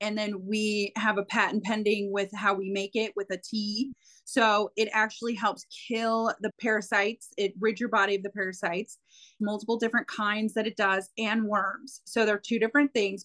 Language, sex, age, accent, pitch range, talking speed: English, female, 30-49, American, 200-235 Hz, 195 wpm